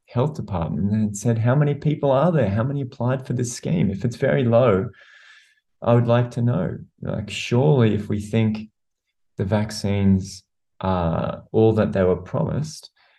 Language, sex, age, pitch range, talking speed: English, male, 20-39, 100-120 Hz, 170 wpm